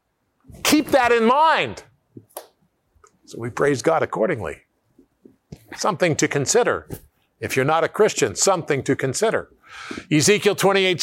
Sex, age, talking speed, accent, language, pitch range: male, 50-69, 120 wpm, American, English, 120-180 Hz